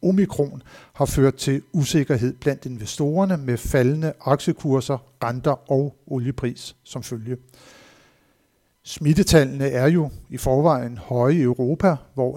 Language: Danish